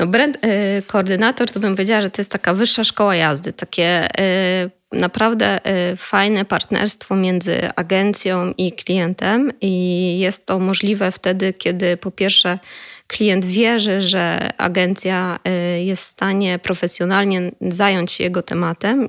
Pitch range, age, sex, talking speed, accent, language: 180-200 Hz, 20-39, female, 125 wpm, native, Polish